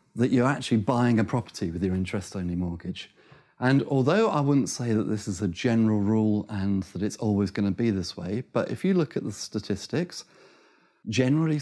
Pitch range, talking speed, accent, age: 105-130 Hz, 190 wpm, British, 30-49